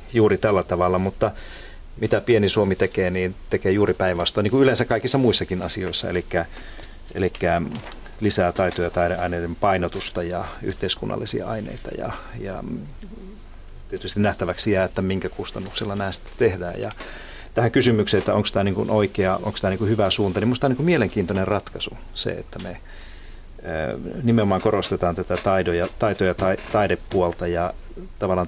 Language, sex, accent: Finnish, male, native